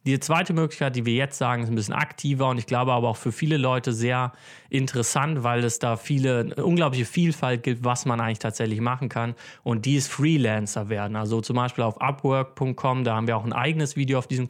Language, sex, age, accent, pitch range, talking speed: German, male, 30-49, German, 120-135 Hz, 220 wpm